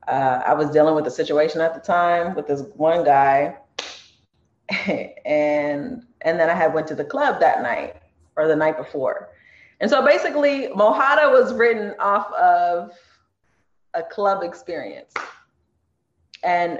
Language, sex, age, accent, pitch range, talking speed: English, female, 20-39, American, 150-205 Hz, 145 wpm